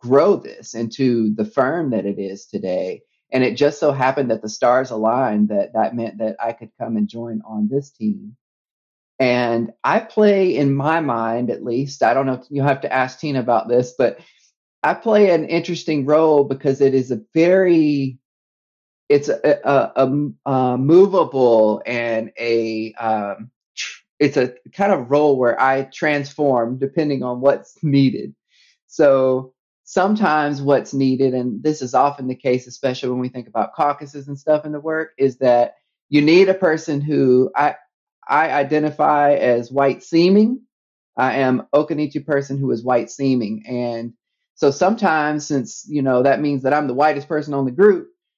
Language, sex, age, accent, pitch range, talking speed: English, male, 30-49, American, 125-150 Hz, 170 wpm